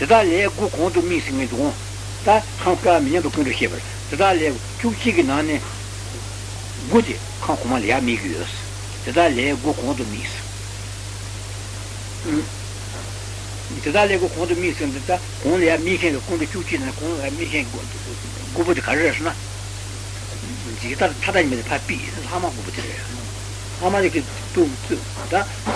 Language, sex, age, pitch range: Italian, male, 60-79, 100-120 Hz